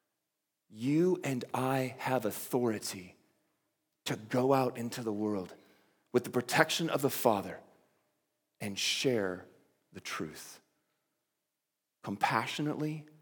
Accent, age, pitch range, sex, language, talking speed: American, 40-59, 130-200 Hz, male, English, 100 wpm